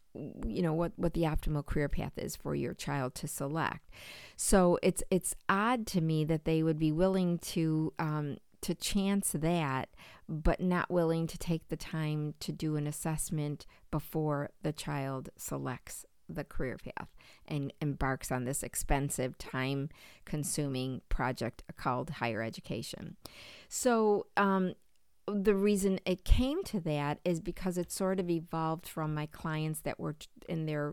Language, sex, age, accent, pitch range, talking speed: English, female, 50-69, American, 145-170 Hz, 155 wpm